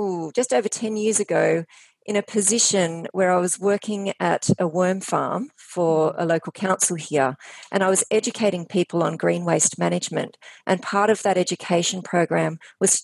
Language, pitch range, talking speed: English, 165-205 Hz, 175 wpm